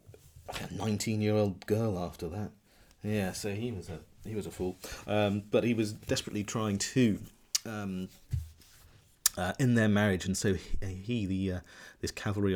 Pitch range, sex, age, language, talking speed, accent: 90-105 Hz, male, 30-49, English, 160 wpm, British